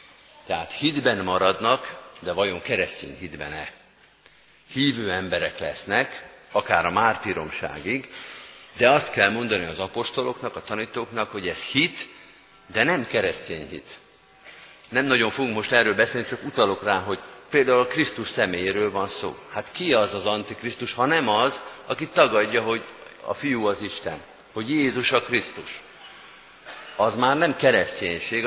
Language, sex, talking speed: Hungarian, male, 140 wpm